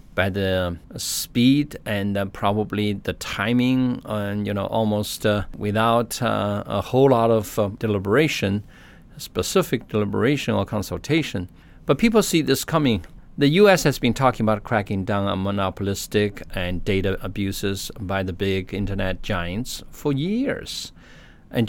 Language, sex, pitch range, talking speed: English, male, 100-125 Hz, 140 wpm